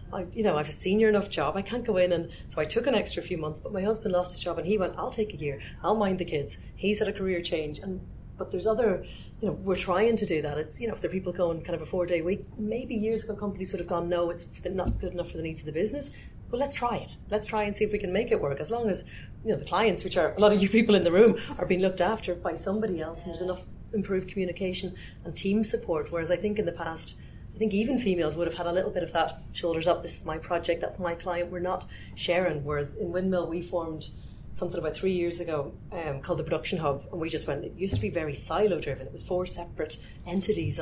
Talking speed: 280 wpm